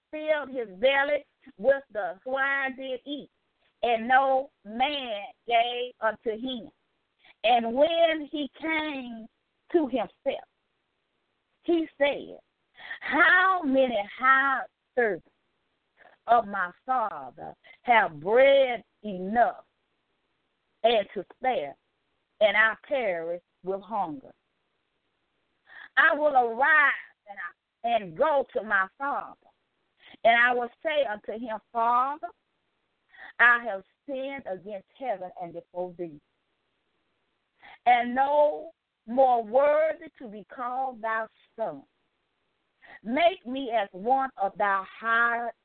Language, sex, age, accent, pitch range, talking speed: English, female, 40-59, American, 225-295 Hz, 105 wpm